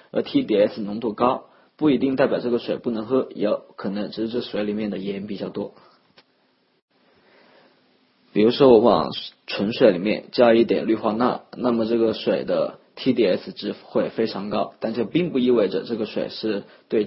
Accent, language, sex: native, Chinese, male